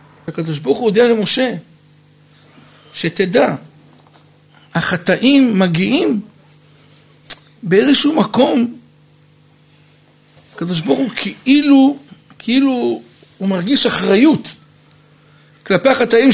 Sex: male